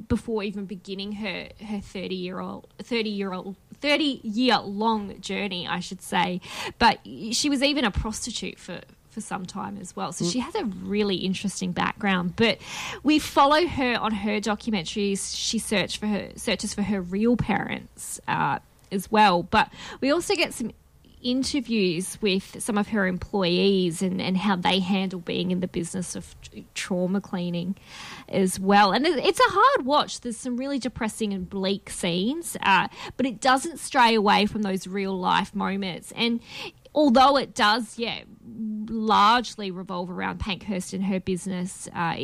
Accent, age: Australian, 10-29